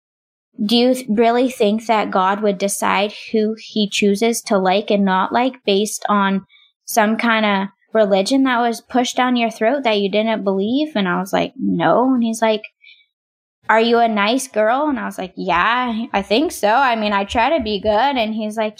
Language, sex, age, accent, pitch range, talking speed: English, female, 20-39, American, 210-245 Hz, 205 wpm